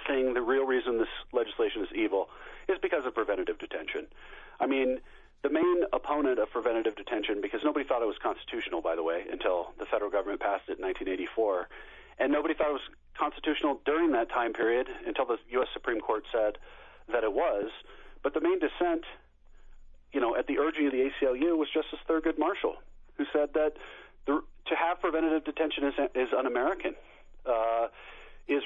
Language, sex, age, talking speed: English, male, 40-59, 175 wpm